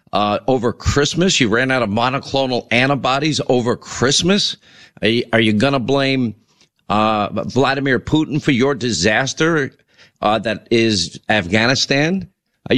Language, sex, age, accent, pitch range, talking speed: English, male, 50-69, American, 110-140 Hz, 130 wpm